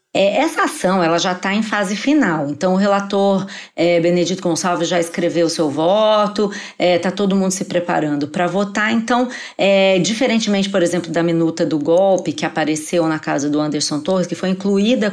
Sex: female